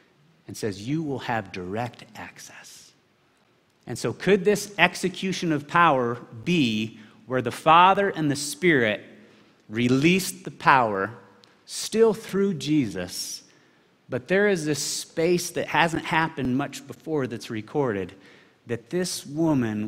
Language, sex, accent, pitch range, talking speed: English, male, American, 120-175 Hz, 125 wpm